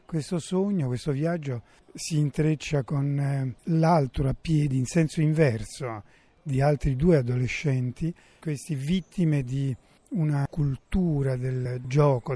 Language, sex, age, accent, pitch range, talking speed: Italian, male, 40-59, native, 130-155 Hz, 115 wpm